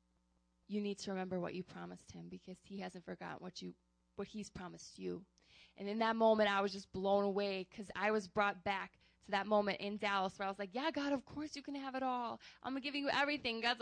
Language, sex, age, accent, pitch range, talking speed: English, female, 20-39, American, 200-240 Hz, 250 wpm